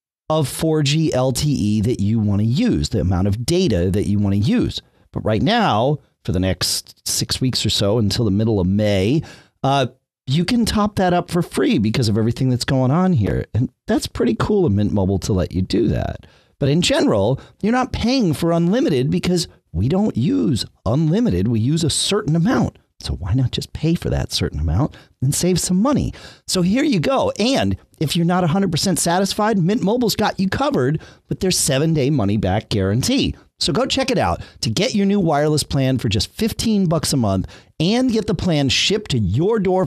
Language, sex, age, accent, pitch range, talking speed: English, male, 40-59, American, 105-175 Hz, 205 wpm